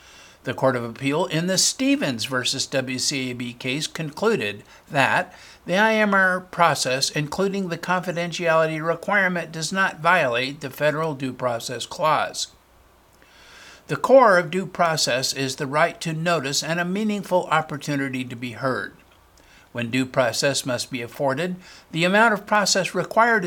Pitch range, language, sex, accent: 135-185 Hz, English, male, American